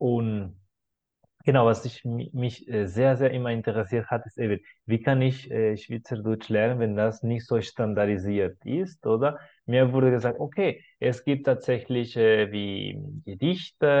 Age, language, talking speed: 20-39, German, 145 wpm